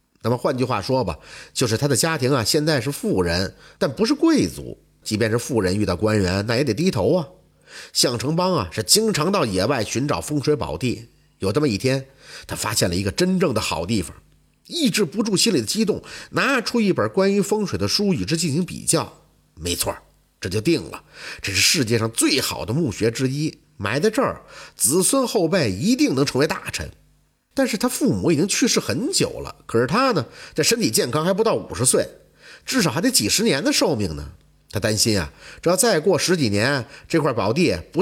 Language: Chinese